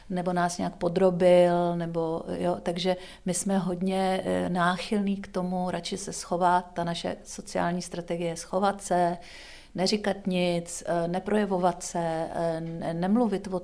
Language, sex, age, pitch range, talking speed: Czech, female, 50-69, 175-195 Hz, 130 wpm